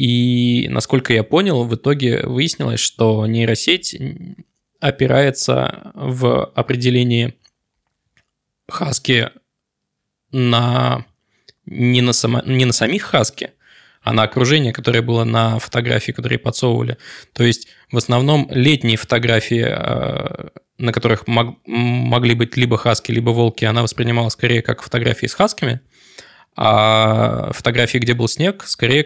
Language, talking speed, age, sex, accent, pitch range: Russian, 110 wpm, 20-39, male, native, 115-130 Hz